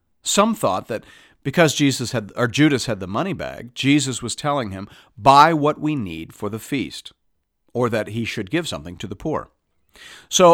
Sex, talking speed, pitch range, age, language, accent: male, 190 wpm, 105-145 Hz, 50-69, English, American